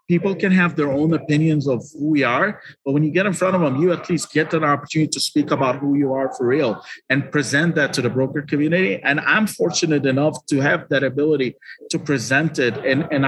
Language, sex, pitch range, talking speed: English, male, 135-165 Hz, 235 wpm